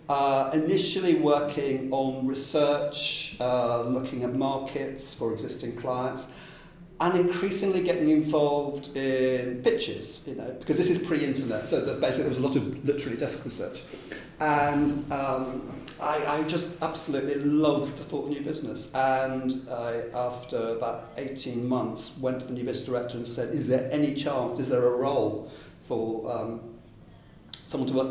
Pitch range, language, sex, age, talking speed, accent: 130-155 Hz, English, male, 40-59, 160 wpm, British